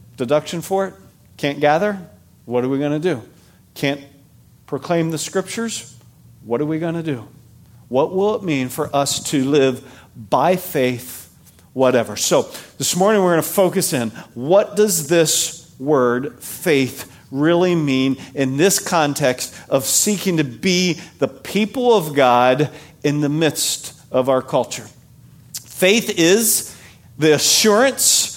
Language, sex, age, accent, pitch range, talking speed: English, male, 50-69, American, 140-210 Hz, 145 wpm